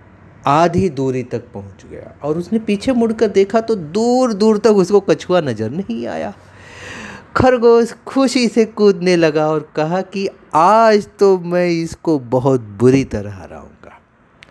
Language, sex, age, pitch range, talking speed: Hindi, male, 30-49, 125-195 Hz, 150 wpm